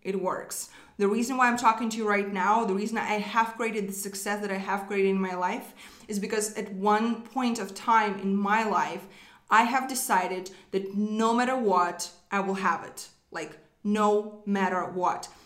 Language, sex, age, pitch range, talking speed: English, female, 20-39, 190-225 Hz, 195 wpm